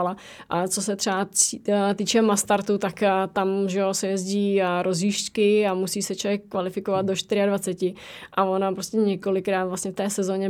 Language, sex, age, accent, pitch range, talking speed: Czech, female, 20-39, native, 190-205 Hz, 155 wpm